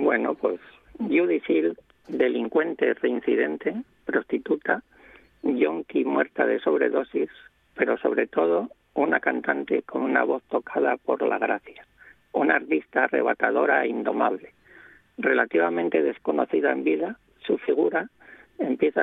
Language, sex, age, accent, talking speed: Spanish, male, 50-69, Spanish, 110 wpm